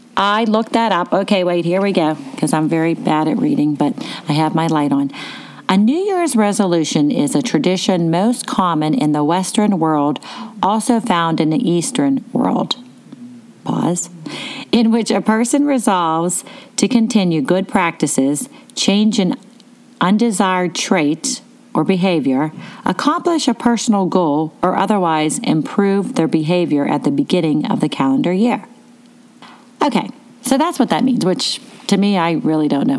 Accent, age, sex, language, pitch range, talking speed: American, 40-59, female, English, 170-250 Hz, 155 wpm